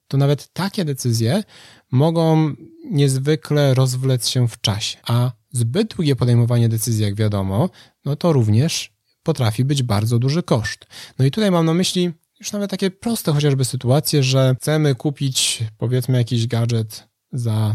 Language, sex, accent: Polish, male, native